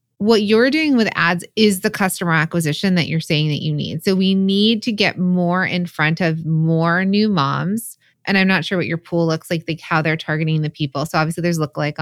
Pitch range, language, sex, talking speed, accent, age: 155-195 Hz, English, female, 235 wpm, American, 20-39